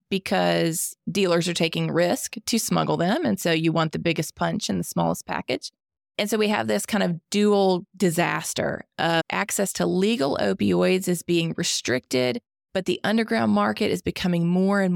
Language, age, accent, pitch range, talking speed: English, 20-39, American, 160-185 Hz, 175 wpm